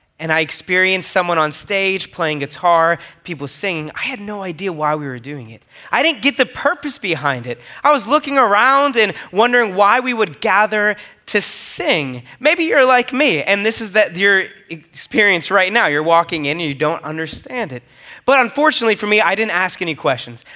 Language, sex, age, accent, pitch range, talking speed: English, male, 20-39, American, 165-210 Hz, 195 wpm